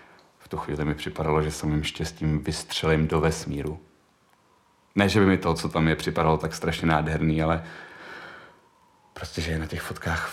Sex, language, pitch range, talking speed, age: male, Czech, 75-80 Hz, 180 wpm, 30-49